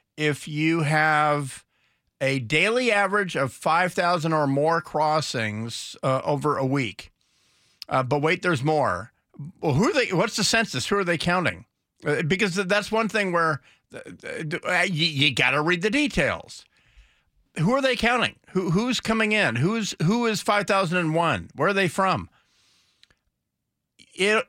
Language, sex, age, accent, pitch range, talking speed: English, male, 50-69, American, 140-190 Hz, 160 wpm